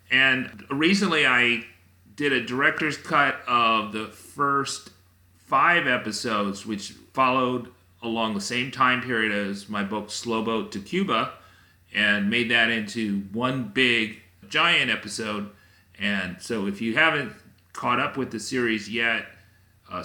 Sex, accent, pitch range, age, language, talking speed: male, American, 95-115 Hz, 40-59, English, 140 wpm